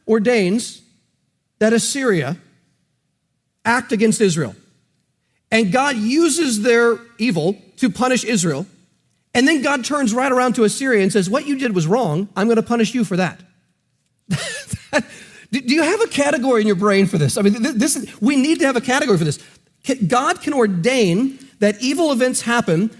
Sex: male